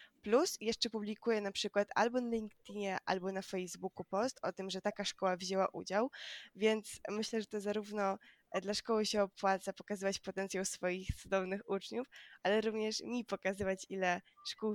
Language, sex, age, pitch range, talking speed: Polish, female, 20-39, 190-220 Hz, 160 wpm